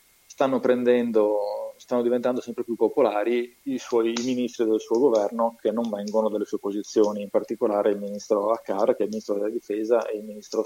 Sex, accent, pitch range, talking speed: male, native, 110-130 Hz, 190 wpm